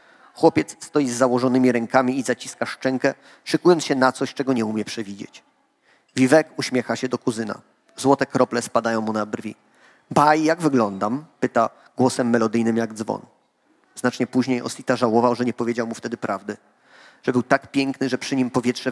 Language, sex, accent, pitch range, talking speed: Polish, male, native, 115-135 Hz, 170 wpm